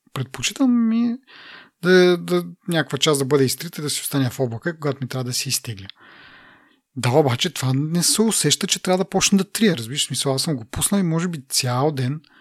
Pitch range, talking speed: 130-175 Hz, 210 wpm